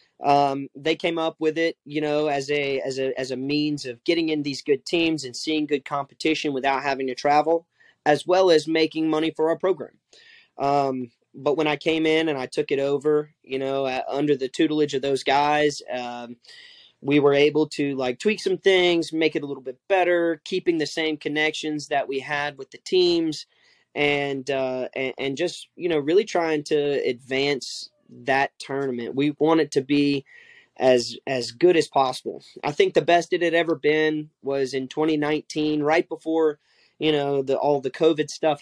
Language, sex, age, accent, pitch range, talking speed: English, male, 20-39, American, 135-160 Hz, 195 wpm